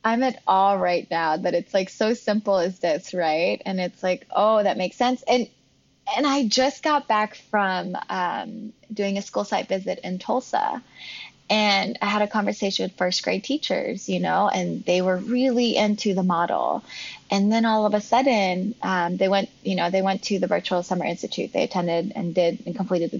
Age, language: 20-39, English